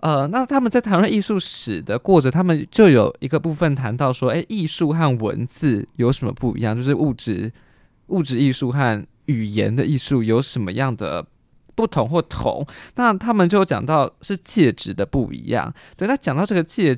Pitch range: 120-165 Hz